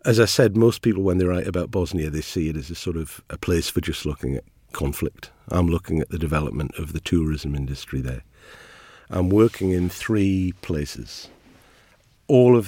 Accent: British